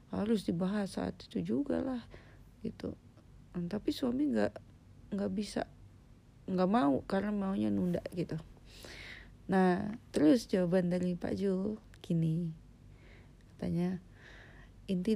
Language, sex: Indonesian, female